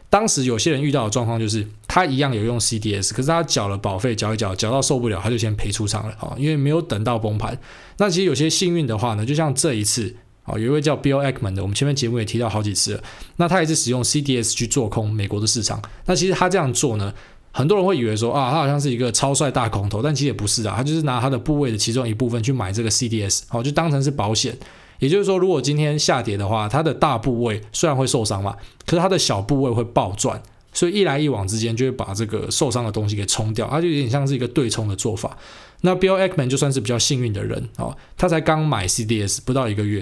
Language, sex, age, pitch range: Chinese, male, 20-39, 110-140 Hz